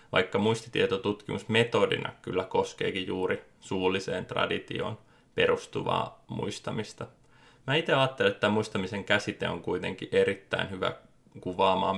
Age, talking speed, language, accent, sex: 20-39, 100 wpm, Finnish, native, male